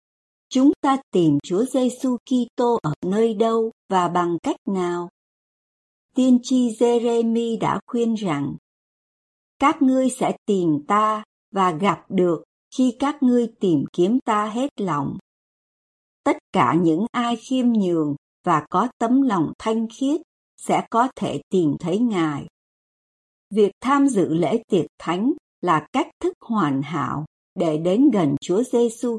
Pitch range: 180-250 Hz